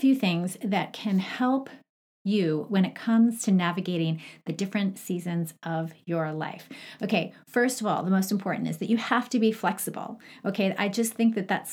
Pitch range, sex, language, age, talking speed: 175-230 Hz, female, English, 30-49, 190 wpm